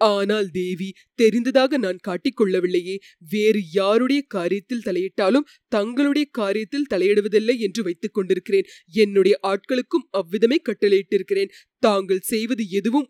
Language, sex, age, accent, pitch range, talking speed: Tamil, female, 20-39, native, 205-270 Hz, 100 wpm